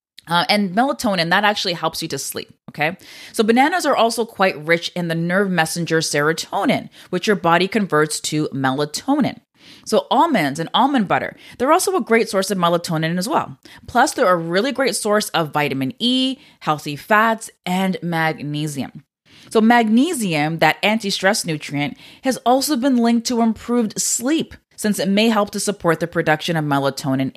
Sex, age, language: female, 20-39, English